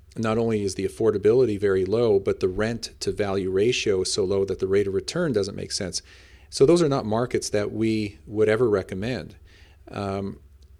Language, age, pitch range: English, 40-59, 95-120 Hz